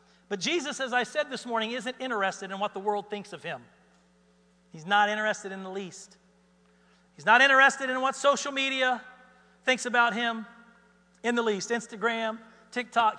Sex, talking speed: male, 170 wpm